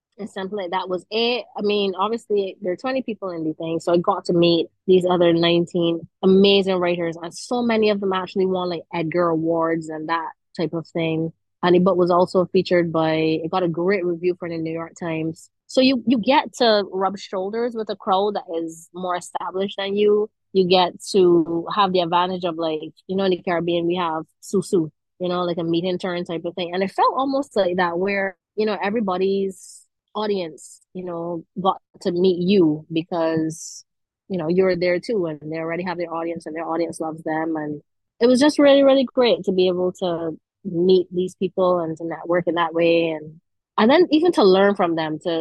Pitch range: 165-195 Hz